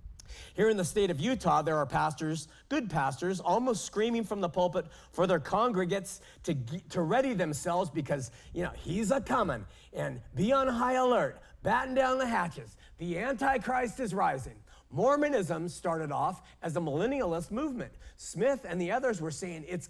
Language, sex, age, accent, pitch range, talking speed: English, male, 40-59, American, 160-225 Hz, 170 wpm